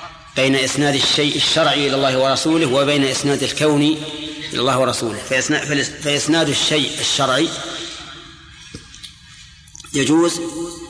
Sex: male